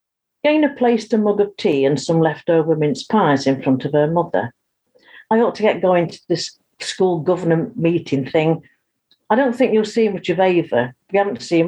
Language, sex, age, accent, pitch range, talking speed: English, female, 50-69, British, 155-220 Hz, 195 wpm